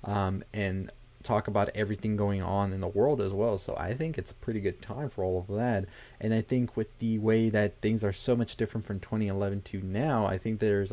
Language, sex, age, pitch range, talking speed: English, male, 20-39, 100-120 Hz, 235 wpm